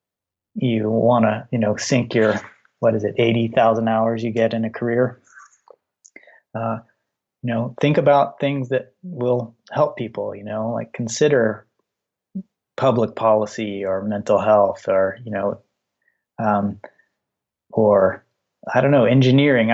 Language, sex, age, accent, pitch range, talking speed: English, male, 30-49, American, 110-125 Hz, 135 wpm